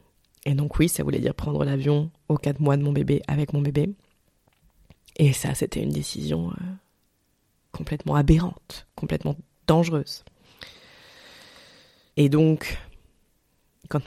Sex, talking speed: female, 125 wpm